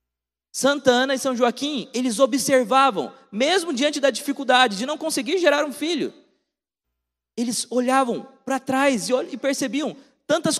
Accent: Brazilian